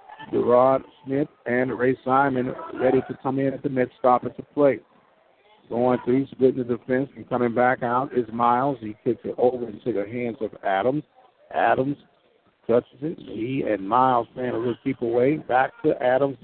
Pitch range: 125-145 Hz